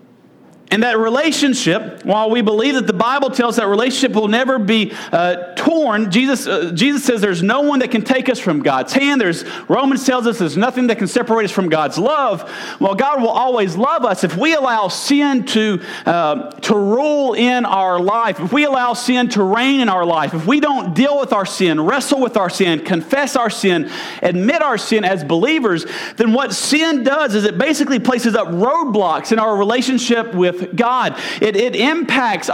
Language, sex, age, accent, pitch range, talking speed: English, male, 40-59, American, 205-270 Hz, 200 wpm